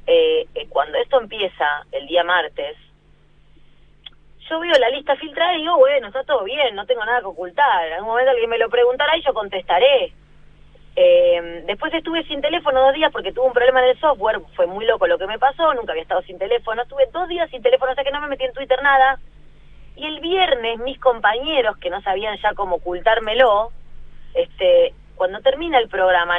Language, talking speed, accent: Spanish, 205 wpm, Argentinian